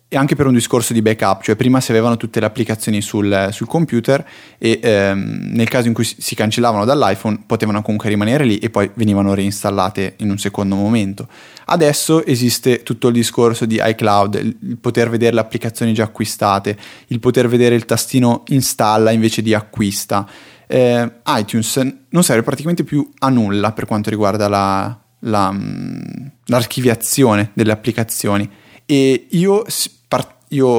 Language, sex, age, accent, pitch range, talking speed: Italian, male, 20-39, native, 110-125 Hz, 150 wpm